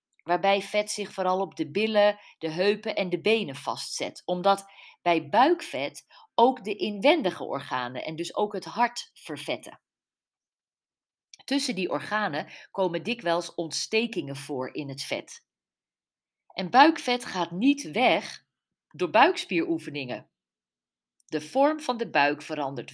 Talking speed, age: 130 wpm, 40-59